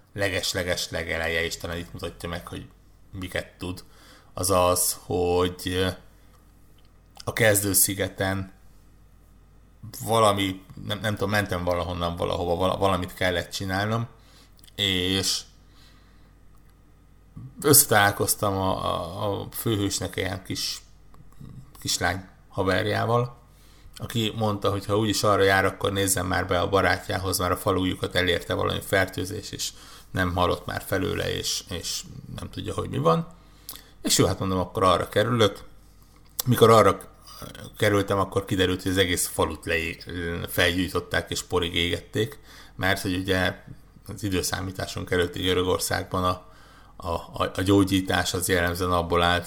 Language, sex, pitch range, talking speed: Hungarian, male, 90-100 Hz, 125 wpm